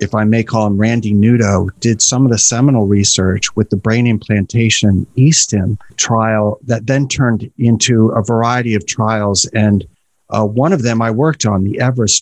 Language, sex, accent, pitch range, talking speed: English, male, American, 110-130 Hz, 180 wpm